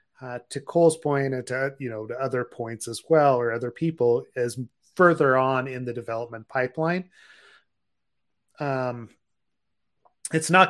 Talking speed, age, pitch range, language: 150 wpm, 30-49, 120-140 Hz, English